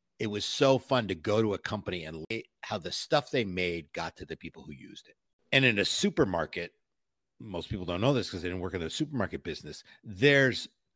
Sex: male